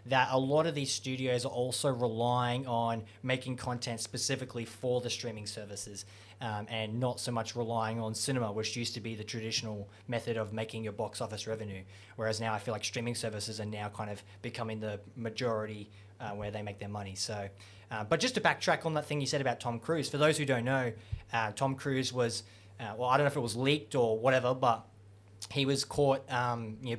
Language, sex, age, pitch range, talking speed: English, male, 20-39, 110-130 Hz, 220 wpm